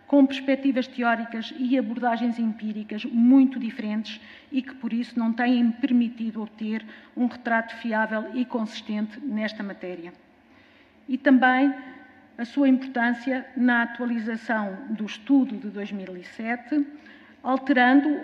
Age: 50-69